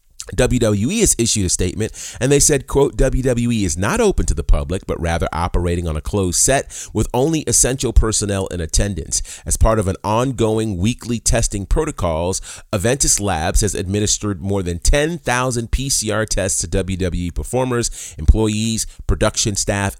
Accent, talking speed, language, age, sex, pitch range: American, 155 wpm, English, 30-49, male, 95-125 Hz